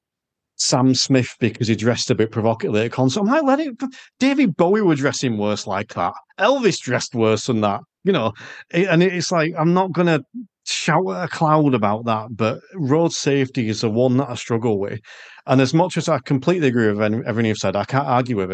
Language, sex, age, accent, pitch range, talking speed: English, male, 40-59, British, 110-145 Hz, 220 wpm